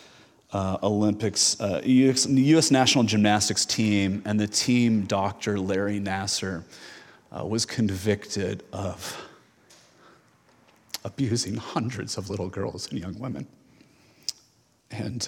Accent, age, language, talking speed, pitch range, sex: American, 30-49, English, 110 wpm, 100-125 Hz, male